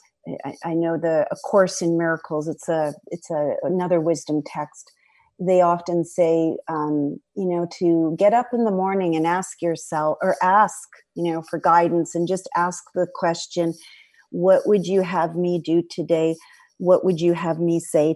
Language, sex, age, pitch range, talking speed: English, female, 40-59, 165-200 Hz, 175 wpm